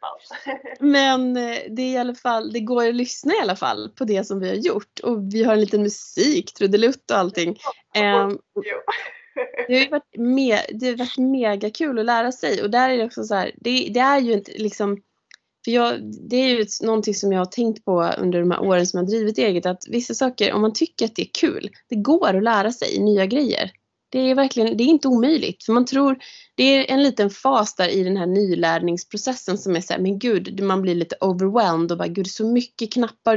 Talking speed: 225 wpm